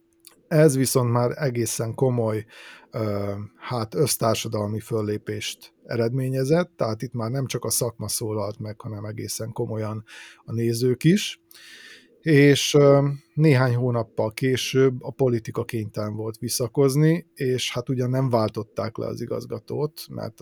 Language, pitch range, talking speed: Hungarian, 110-130 Hz, 125 wpm